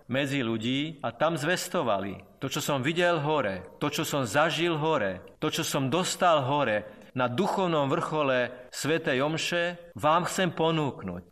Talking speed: 150 wpm